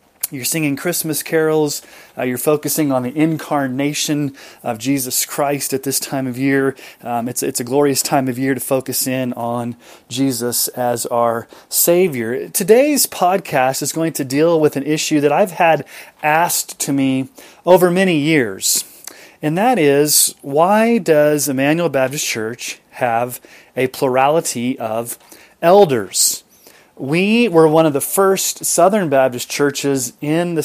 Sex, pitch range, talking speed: male, 135-160 Hz, 150 wpm